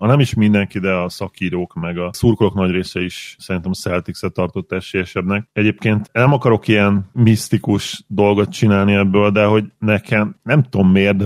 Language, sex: Hungarian, male